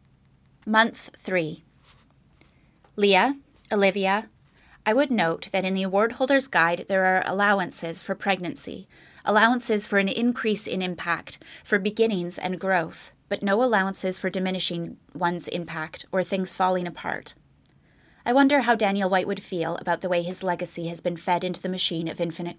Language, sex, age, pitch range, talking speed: English, female, 20-39, 175-215 Hz, 155 wpm